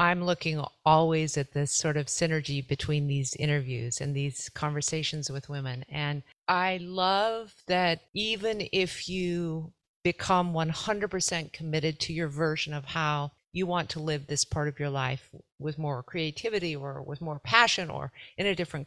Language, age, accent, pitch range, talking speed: English, 50-69, American, 150-185 Hz, 160 wpm